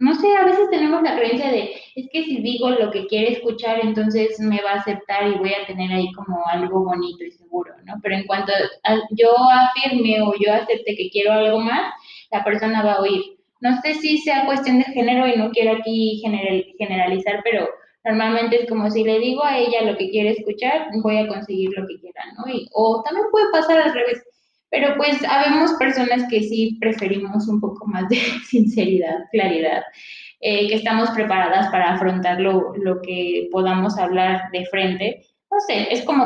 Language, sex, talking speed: Spanish, female, 195 wpm